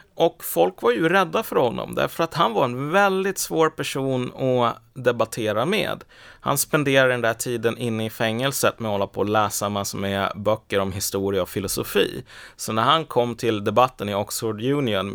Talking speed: 190 wpm